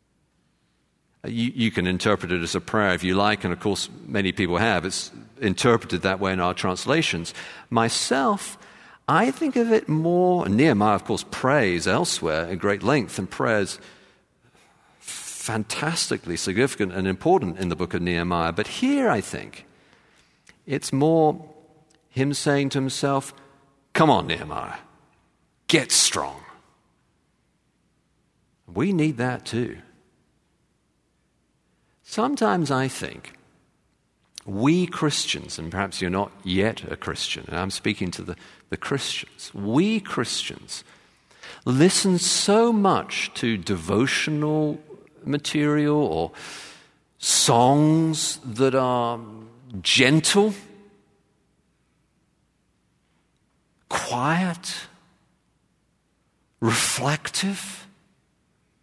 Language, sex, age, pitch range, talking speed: English, male, 50-69, 100-160 Hz, 105 wpm